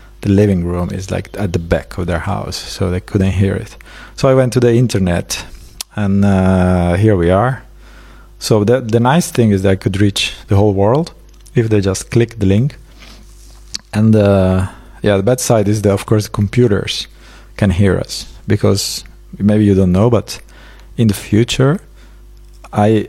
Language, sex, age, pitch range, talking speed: English, male, 40-59, 95-115 Hz, 180 wpm